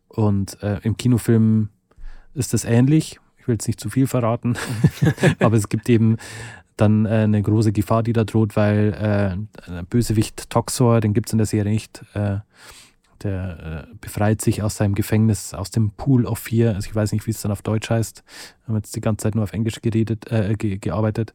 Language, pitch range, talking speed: German, 100-115 Hz, 200 wpm